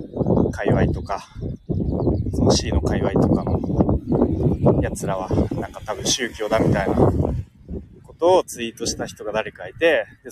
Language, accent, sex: Japanese, native, male